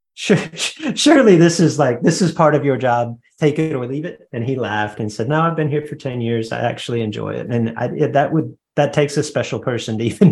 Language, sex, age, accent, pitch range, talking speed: English, male, 30-49, American, 135-185 Hz, 245 wpm